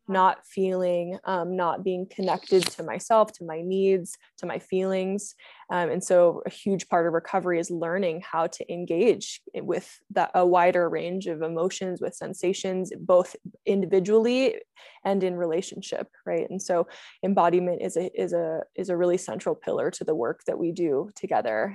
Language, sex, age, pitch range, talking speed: English, female, 20-39, 175-215 Hz, 155 wpm